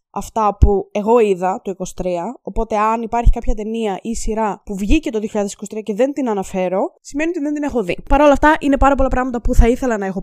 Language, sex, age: Greek, female, 20-39